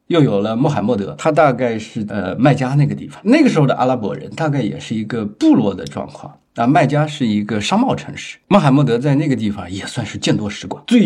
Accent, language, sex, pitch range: native, Chinese, male, 120-165 Hz